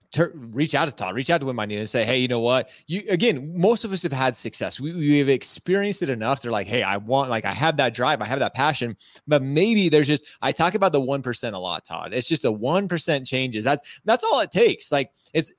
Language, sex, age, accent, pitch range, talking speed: English, male, 20-39, American, 125-165 Hz, 265 wpm